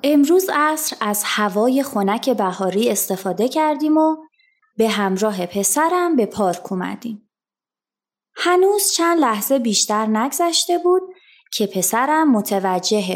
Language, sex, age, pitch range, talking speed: Persian, female, 20-39, 200-330 Hz, 110 wpm